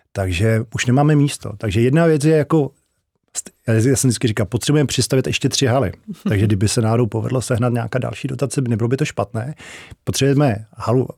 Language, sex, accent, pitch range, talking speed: Czech, male, native, 110-135 Hz, 185 wpm